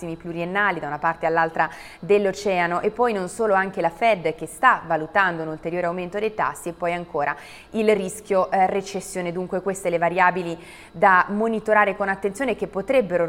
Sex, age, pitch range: female, 20-39, 165-200 Hz